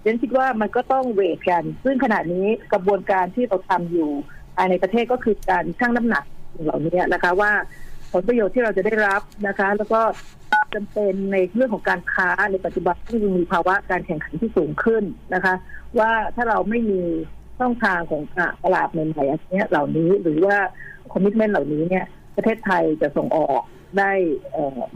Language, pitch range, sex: Thai, 175-215 Hz, female